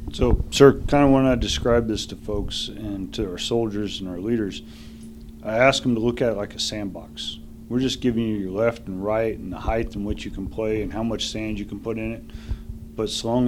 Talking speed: 250 wpm